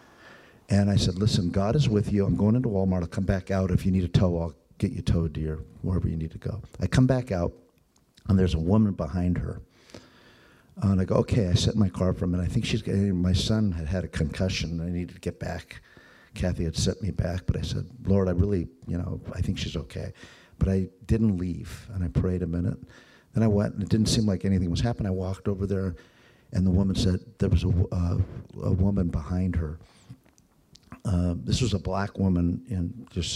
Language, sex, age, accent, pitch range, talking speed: English, male, 50-69, American, 90-110 Hz, 230 wpm